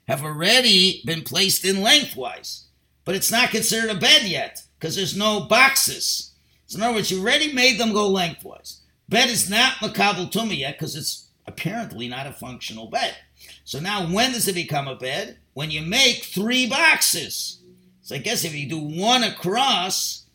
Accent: American